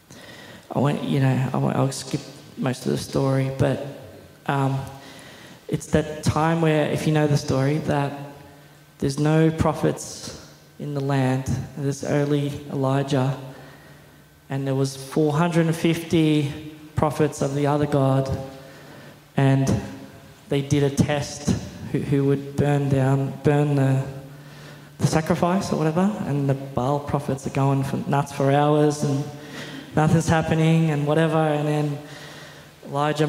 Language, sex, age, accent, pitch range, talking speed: English, male, 20-39, Australian, 135-155 Hz, 130 wpm